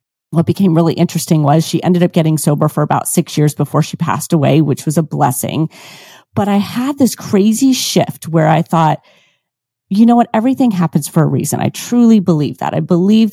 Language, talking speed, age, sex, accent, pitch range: English, 205 wpm, 30-49, female, American, 155-200 Hz